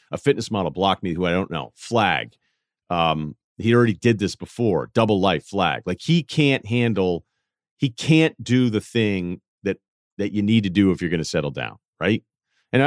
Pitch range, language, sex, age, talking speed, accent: 90-125 Hz, English, male, 40-59, 195 wpm, American